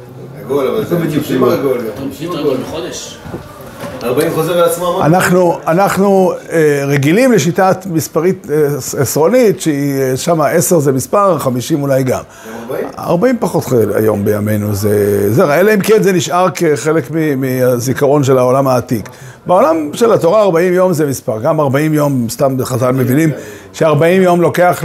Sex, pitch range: male, 125-175 Hz